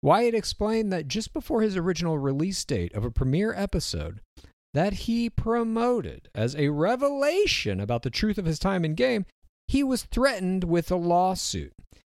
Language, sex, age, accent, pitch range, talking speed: English, male, 50-69, American, 110-185 Hz, 165 wpm